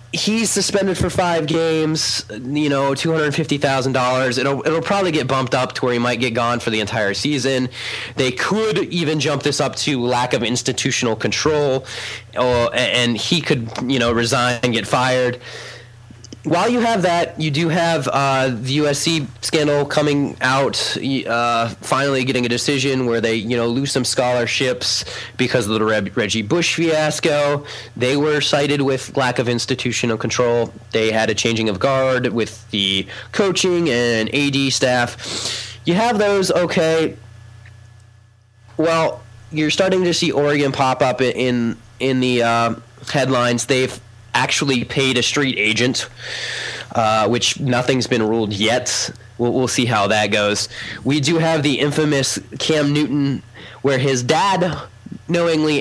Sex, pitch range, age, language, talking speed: male, 115-145 Hz, 30-49, English, 155 wpm